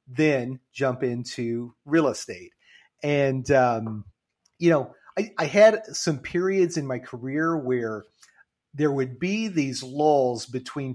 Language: English